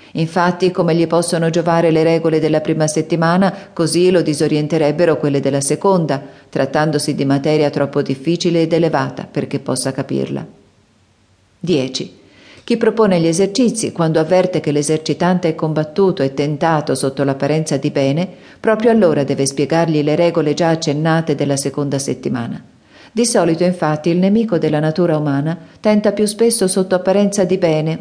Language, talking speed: Italian, 150 wpm